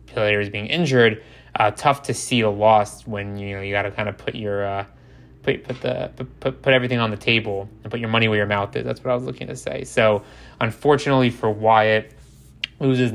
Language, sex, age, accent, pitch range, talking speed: English, male, 20-39, American, 105-120 Hz, 225 wpm